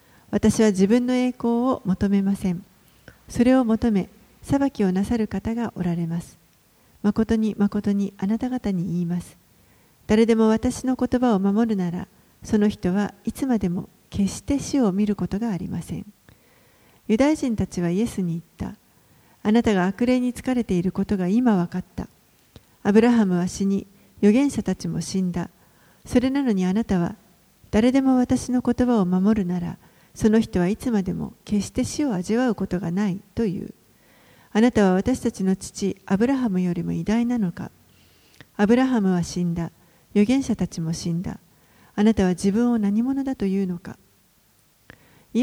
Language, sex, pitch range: Japanese, female, 185-235 Hz